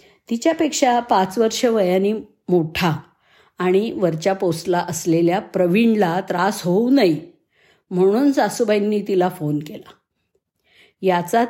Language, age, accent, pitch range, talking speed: Marathi, 50-69, native, 165-210 Hz, 100 wpm